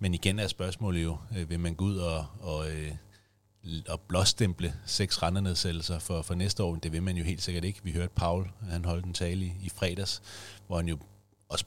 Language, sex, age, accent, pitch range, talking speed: Danish, male, 30-49, native, 85-100 Hz, 205 wpm